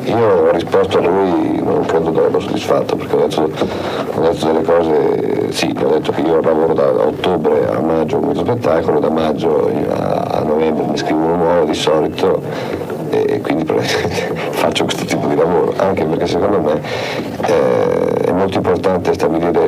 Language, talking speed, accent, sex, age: Italian, 165 wpm, native, male, 50-69